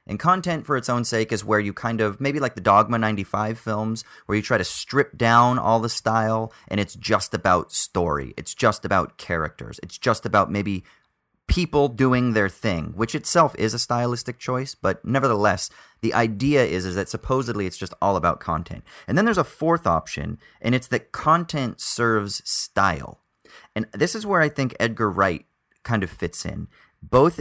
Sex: male